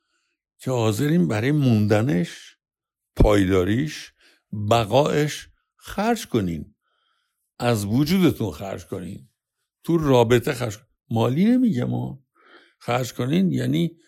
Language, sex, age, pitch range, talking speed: Persian, male, 60-79, 105-150 Hz, 90 wpm